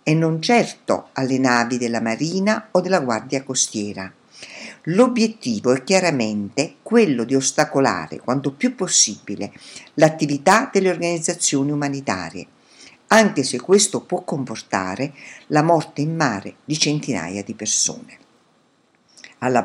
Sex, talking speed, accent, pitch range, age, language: female, 115 wpm, native, 125-185 Hz, 50-69, Italian